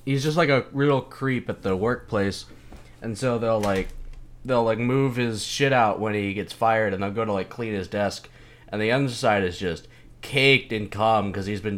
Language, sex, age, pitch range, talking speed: English, male, 20-39, 95-120 Hz, 215 wpm